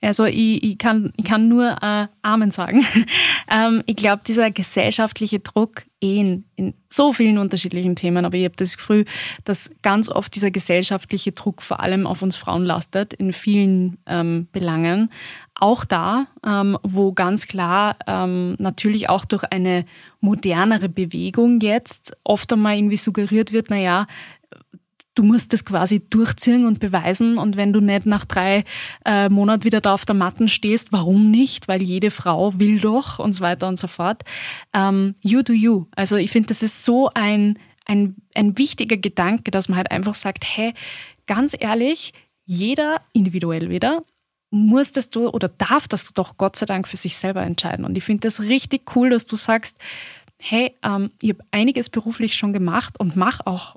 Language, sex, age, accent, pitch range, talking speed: German, female, 20-39, German, 190-225 Hz, 170 wpm